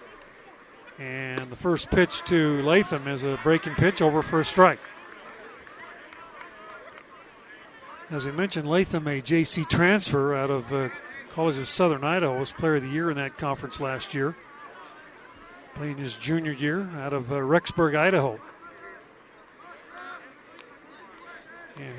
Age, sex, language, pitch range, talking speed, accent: 50-69, male, English, 140-170 Hz, 130 wpm, American